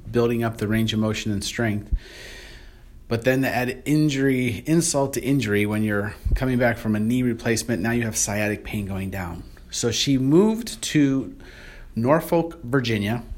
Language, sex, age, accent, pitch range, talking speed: English, male, 30-49, American, 105-130 Hz, 165 wpm